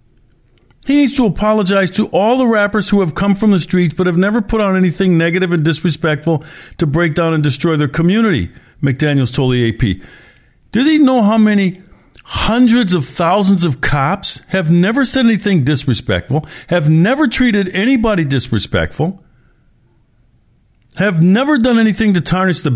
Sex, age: male, 50-69